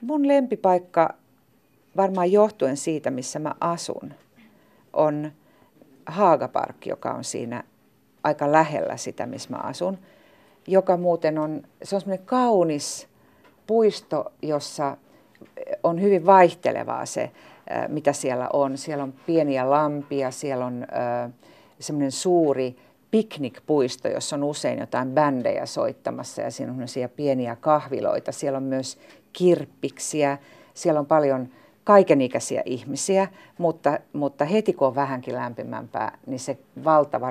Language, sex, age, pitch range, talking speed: Finnish, female, 50-69, 135-180 Hz, 120 wpm